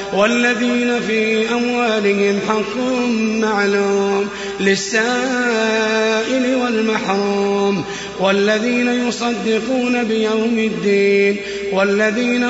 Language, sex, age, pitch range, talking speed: Arabic, male, 30-49, 200-245 Hz, 60 wpm